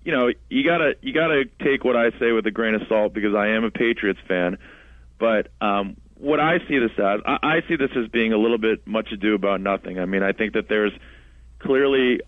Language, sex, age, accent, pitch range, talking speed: English, male, 30-49, American, 100-110 Hz, 240 wpm